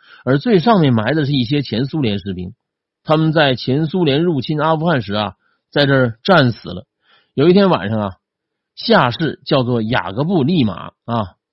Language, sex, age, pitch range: Chinese, male, 50-69, 115-175 Hz